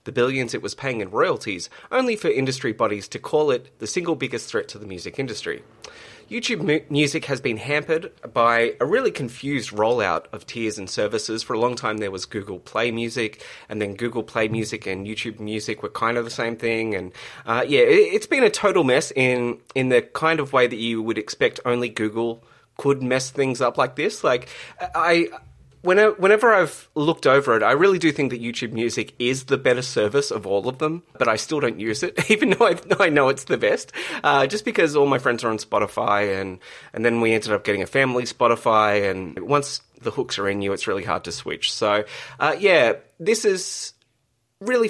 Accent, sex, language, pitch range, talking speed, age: Australian, male, English, 110-155 Hz, 210 wpm, 30-49